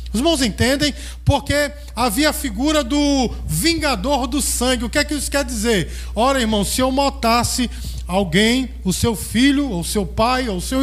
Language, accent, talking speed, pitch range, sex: Portuguese, Brazilian, 175 wpm, 210-285 Hz, male